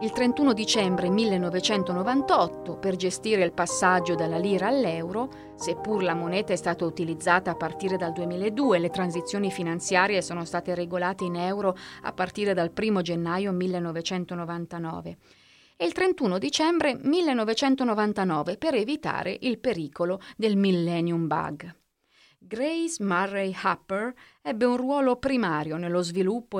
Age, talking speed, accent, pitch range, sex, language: 30-49, 125 wpm, native, 175-235 Hz, female, Italian